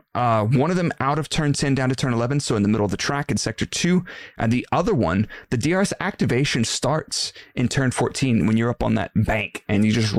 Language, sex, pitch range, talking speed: English, male, 105-135 Hz, 245 wpm